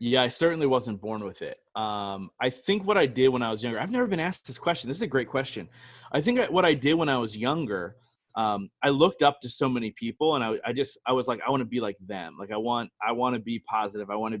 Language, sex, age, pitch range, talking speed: English, male, 20-39, 105-130 Hz, 285 wpm